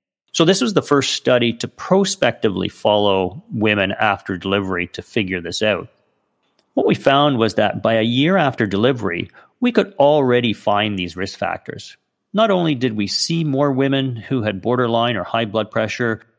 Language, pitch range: English, 100-130 Hz